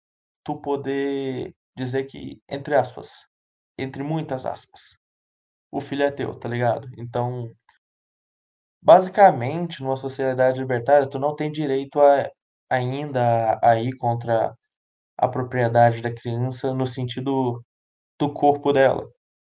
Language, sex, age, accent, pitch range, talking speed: Portuguese, male, 20-39, Brazilian, 120-145 Hz, 115 wpm